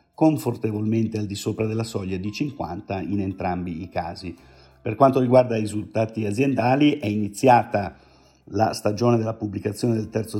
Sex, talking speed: male, 150 wpm